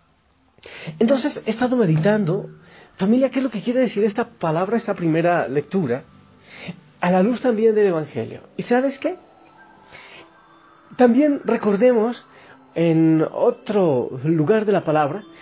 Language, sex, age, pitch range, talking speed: Spanish, male, 40-59, 160-245 Hz, 130 wpm